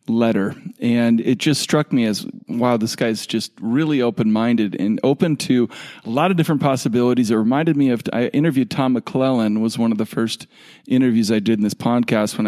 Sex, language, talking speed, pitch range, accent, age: male, English, 200 wpm, 115-150 Hz, American, 40-59